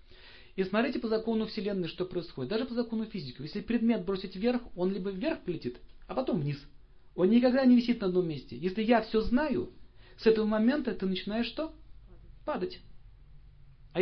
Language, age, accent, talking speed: Russian, 40-59, native, 175 wpm